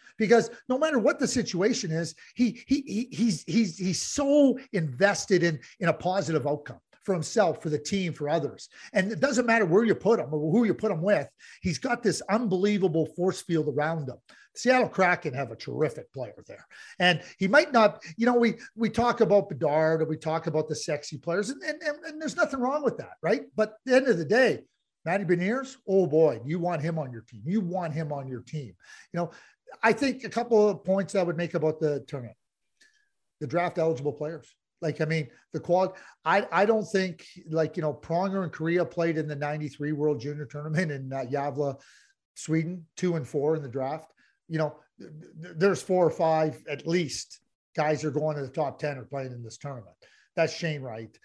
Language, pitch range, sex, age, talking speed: English, 155-215 Hz, male, 50-69, 210 wpm